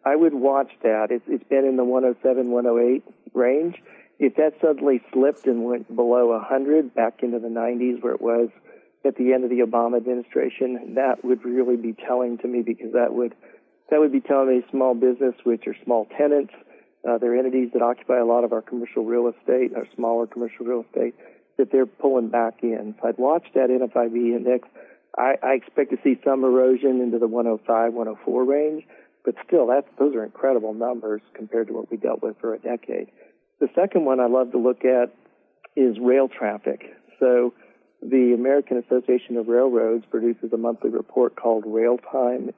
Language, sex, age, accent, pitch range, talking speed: English, male, 50-69, American, 115-130 Hz, 190 wpm